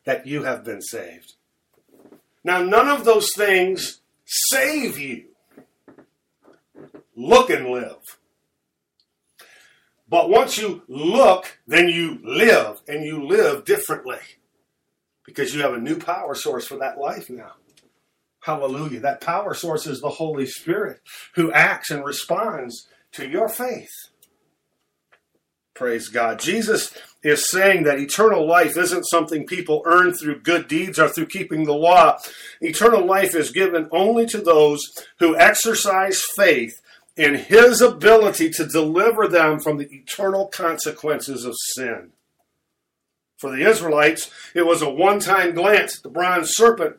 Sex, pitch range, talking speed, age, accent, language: male, 155-210 Hz, 135 wpm, 50-69, American, English